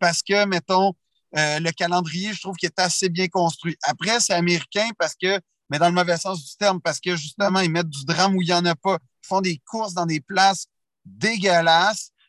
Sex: male